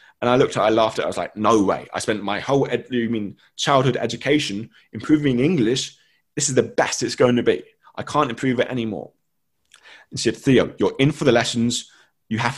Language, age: English, 20-39